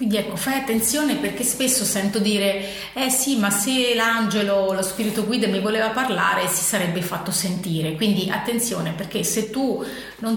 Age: 30-49